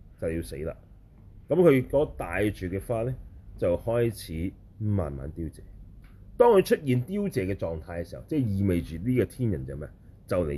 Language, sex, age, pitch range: Chinese, male, 30-49, 85-110 Hz